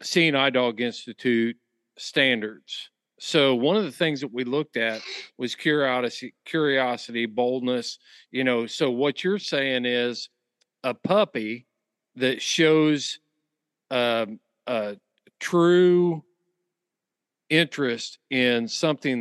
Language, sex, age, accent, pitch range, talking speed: English, male, 40-59, American, 120-160 Hz, 110 wpm